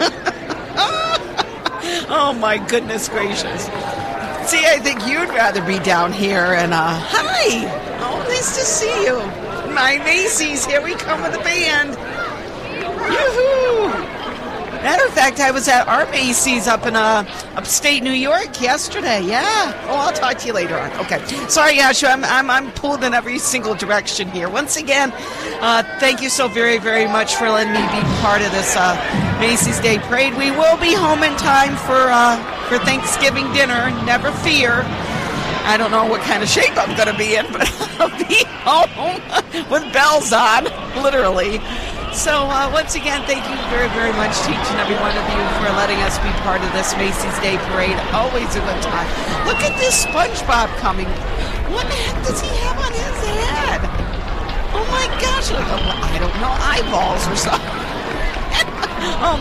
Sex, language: female, English